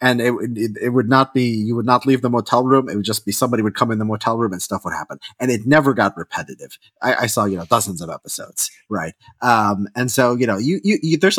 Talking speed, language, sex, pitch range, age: 280 wpm, English, male, 105-135 Hz, 30-49